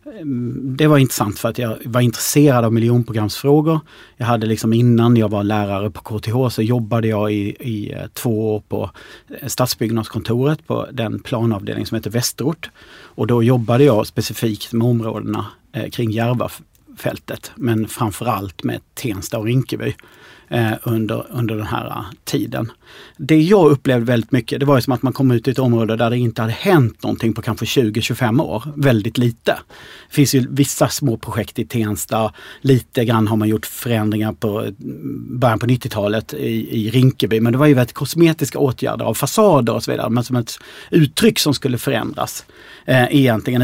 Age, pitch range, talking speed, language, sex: 40-59, 115-140 Hz, 170 wpm, Swedish, male